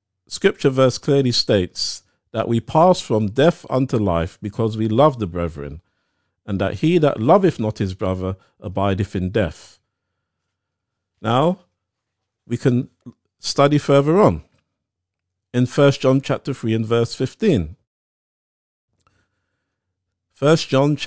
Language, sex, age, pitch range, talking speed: English, male, 50-69, 95-120 Hz, 120 wpm